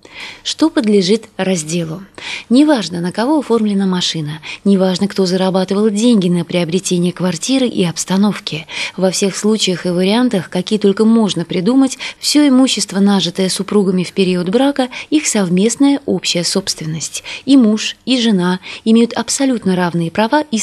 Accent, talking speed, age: native, 135 wpm, 20-39